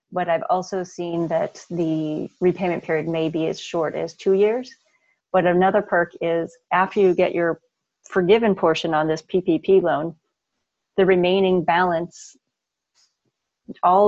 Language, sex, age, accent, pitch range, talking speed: English, female, 30-49, American, 170-195 Hz, 140 wpm